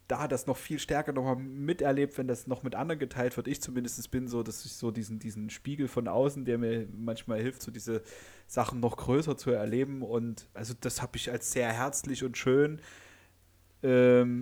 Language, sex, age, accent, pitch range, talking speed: German, male, 30-49, German, 110-125 Hz, 205 wpm